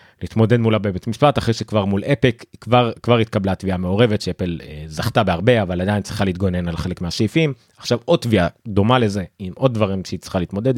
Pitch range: 95-120 Hz